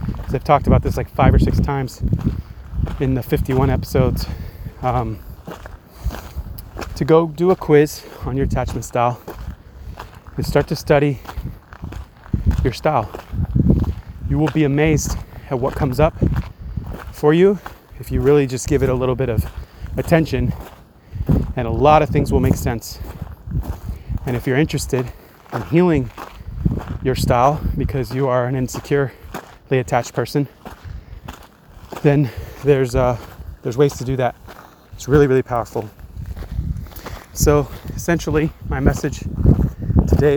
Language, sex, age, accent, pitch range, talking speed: English, male, 30-49, American, 90-145 Hz, 135 wpm